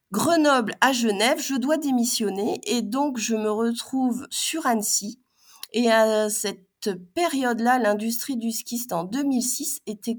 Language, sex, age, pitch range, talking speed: French, female, 30-49, 210-265 Hz, 135 wpm